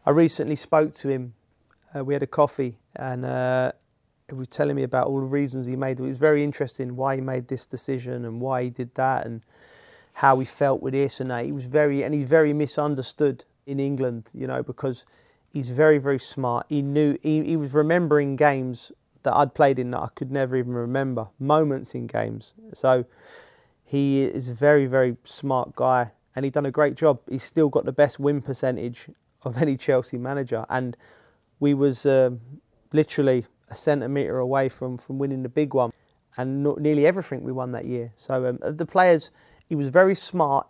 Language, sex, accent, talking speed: Hebrew, male, British, 200 wpm